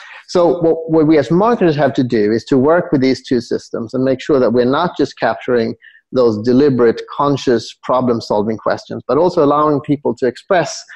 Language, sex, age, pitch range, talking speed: English, male, 30-49, 120-155 Hz, 185 wpm